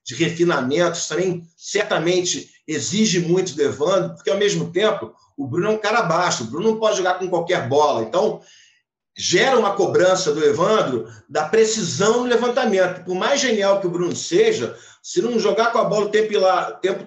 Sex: male